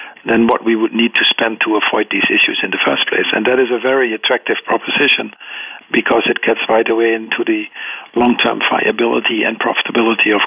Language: English